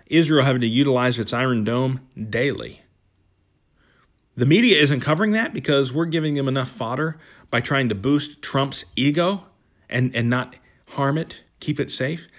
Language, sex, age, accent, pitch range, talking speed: English, male, 40-59, American, 115-160 Hz, 160 wpm